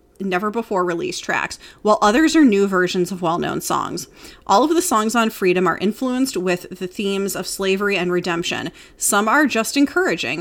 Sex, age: female, 30-49